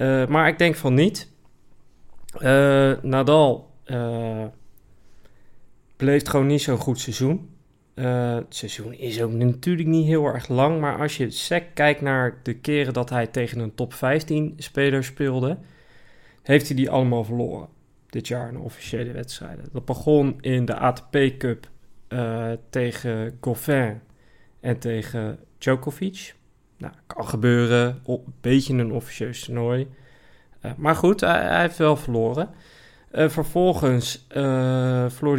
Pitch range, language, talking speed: 120-145 Hz, Dutch, 140 wpm